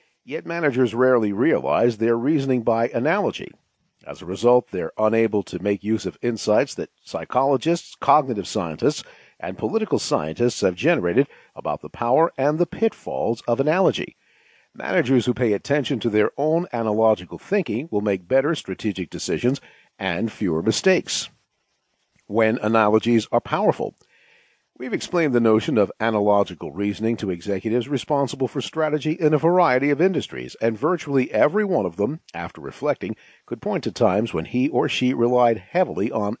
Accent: American